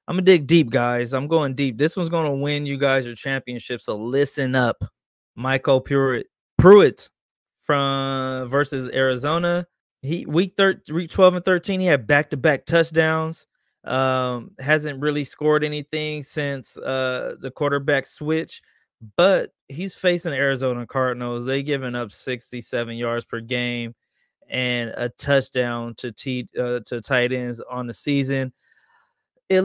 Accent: American